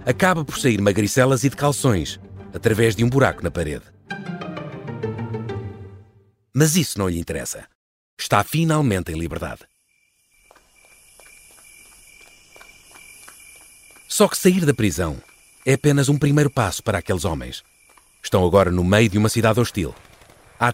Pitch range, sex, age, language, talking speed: 95-135 Hz, male, 40-59, Portuguese, 125 wpm